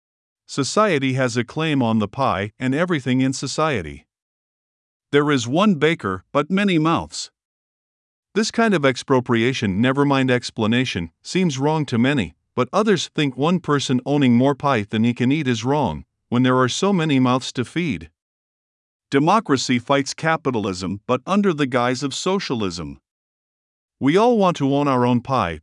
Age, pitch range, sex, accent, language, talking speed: 50-69, 120-155 Hz, male, American, English, 160 wpm